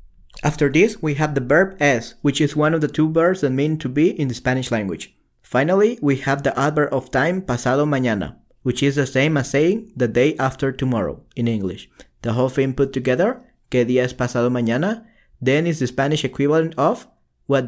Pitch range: 130-165 Hz